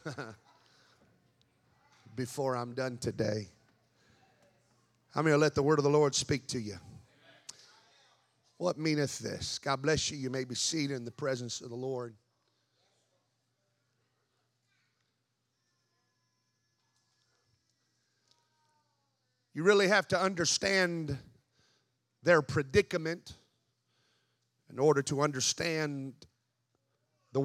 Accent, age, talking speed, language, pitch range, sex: American, 40-59, 95 wpm, English, 125-185 Hz, male